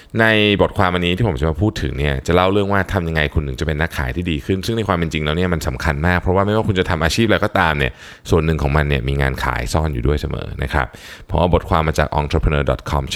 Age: 20-39